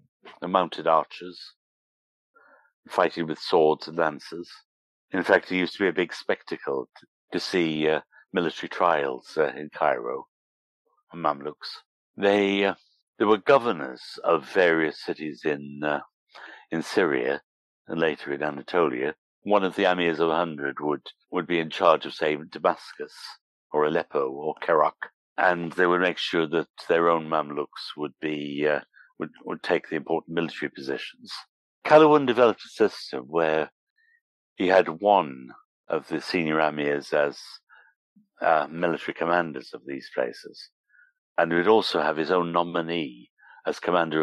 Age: 60-79